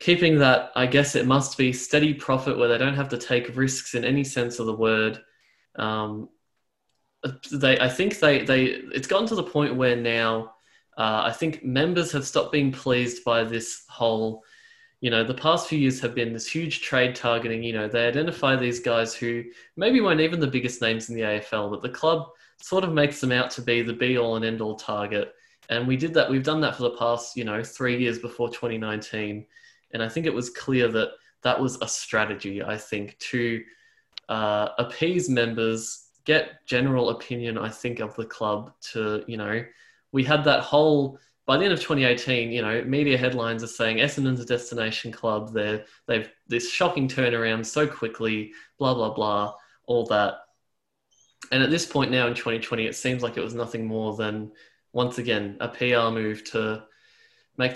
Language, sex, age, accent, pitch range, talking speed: English, male, 20-39, Australian, 115-140 Hz, 190 wpm